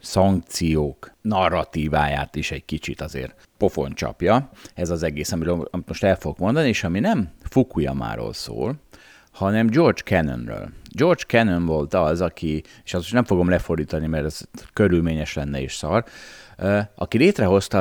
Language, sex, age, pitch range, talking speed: Hungarian, male, 30-49, 80-100 Hz, 145 wpm